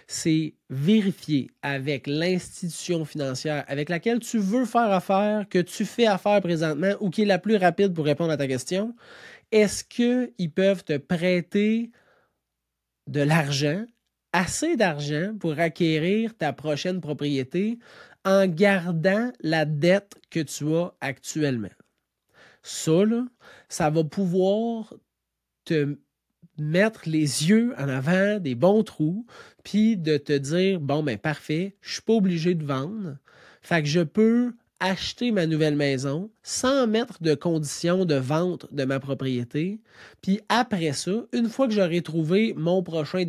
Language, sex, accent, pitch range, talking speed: French, male, Canadian, 150-210 Hz, 140 wpm